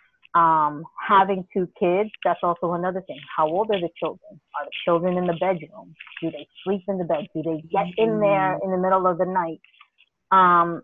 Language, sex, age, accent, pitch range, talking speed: English, female, 30-49, American, 170-200 Hz, 205 wpm